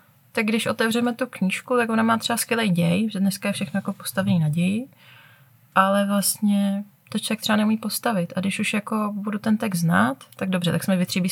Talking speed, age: 210 wpm, 20-39